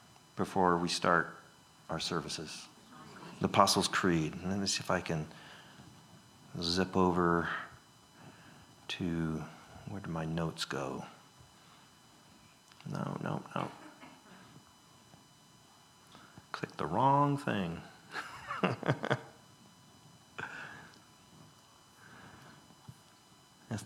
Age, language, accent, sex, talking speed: 40-59, English, American, male, 75 wpm